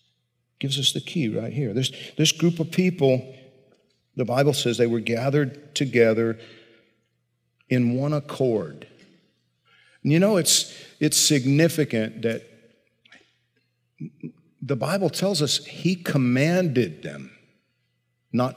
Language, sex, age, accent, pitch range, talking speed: English, male, 50-69, American, 120-160 Hz, 115 wpm